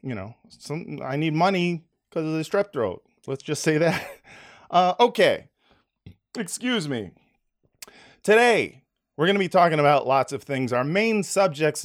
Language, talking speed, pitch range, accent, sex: English, 160 wpm, 120-180 Hz, American, male